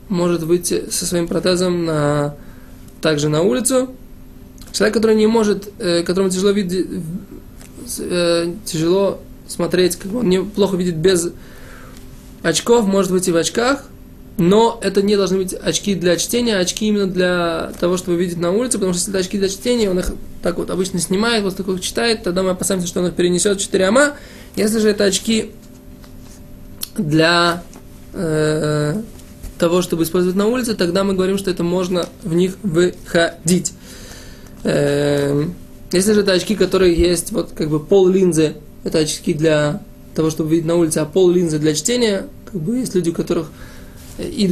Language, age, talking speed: Russian, 20-39, 170 wpm